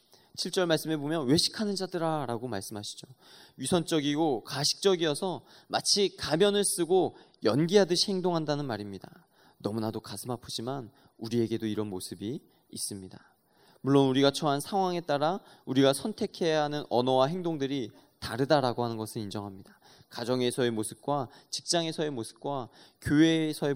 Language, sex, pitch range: Korean, male, 120-165 Hz